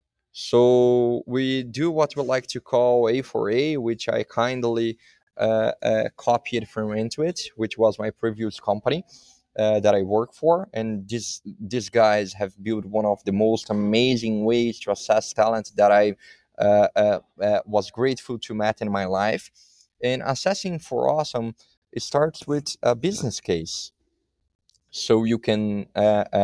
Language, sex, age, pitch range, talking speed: English, male, 20-39, 105-135 Hz, 155 wpm